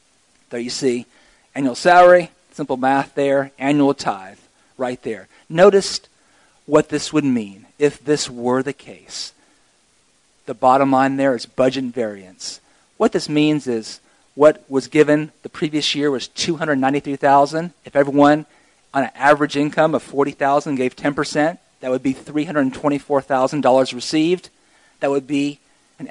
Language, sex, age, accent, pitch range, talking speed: English, male, 40-59, American, 125-150 Hz, 165 wpm